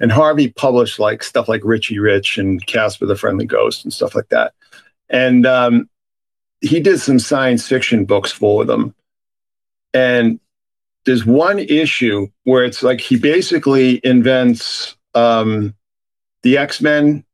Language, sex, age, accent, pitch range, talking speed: English, male, 50-69, American, 110-140 Hz, 140 wpm